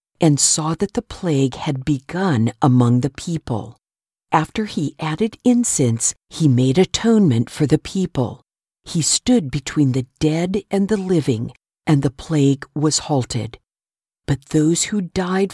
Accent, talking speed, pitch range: American, 145 wpm, 130-180 Hz